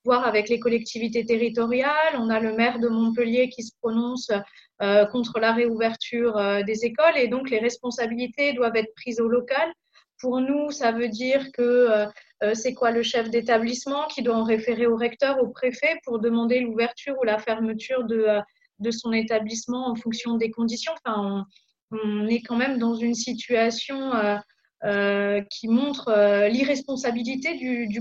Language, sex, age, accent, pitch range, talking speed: French, female, 20-39, French, 220-245 Hz, 170 wpm